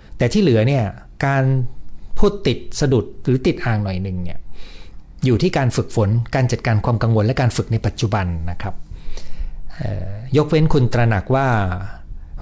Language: Thai